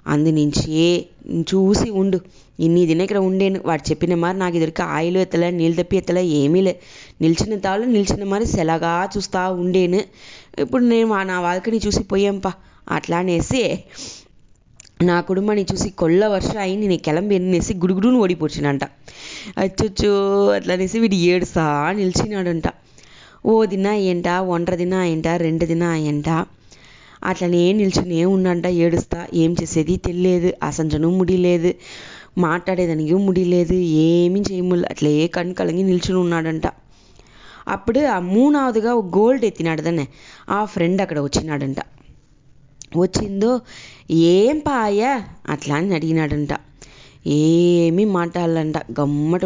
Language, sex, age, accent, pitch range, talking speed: English, female, 20-39, Indian, 165-195 Hz, 85 wpm